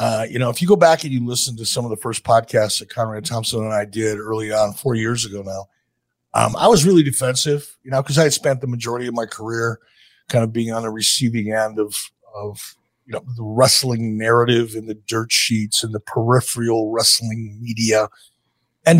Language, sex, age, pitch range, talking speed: English, male, 50-69, 115-155 Hz, 215 wpm